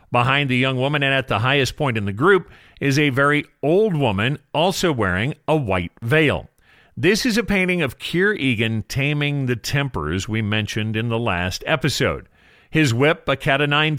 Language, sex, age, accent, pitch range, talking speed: English, male, 40-59, American, 115-150 Hz, 190 wpm